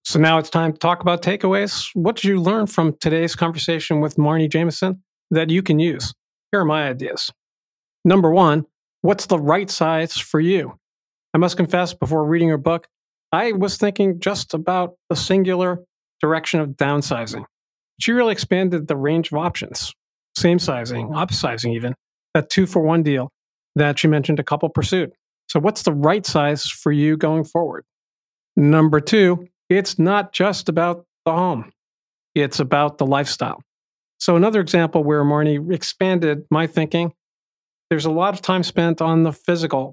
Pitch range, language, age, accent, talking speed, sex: 150-175 Hz, English, 40-59, American, 165 wpm, male